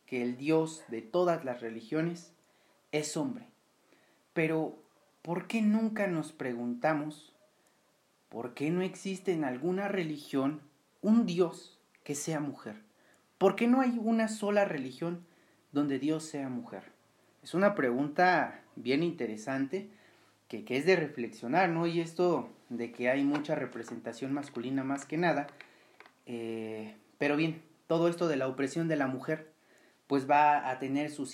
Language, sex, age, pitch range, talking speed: Spanish, male, 40-59, 125-170 Hz, 145 wpm